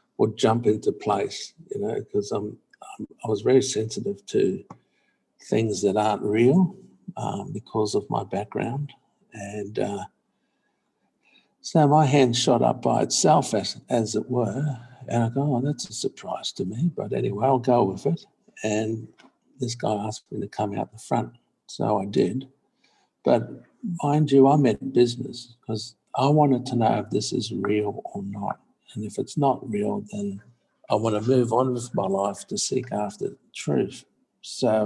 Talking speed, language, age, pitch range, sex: 175 wpm, English, 60-79, 105-140 Hz, male